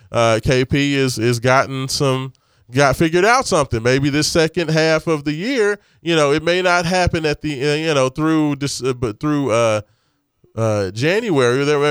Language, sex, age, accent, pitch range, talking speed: English, male, 20-39, American, 115-145 Hz, 175 wpm